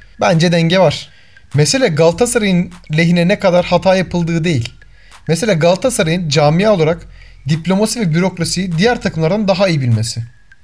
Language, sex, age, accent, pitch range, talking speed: Turkish, male, 40-59, native, 155-205 Hz, 130 wpm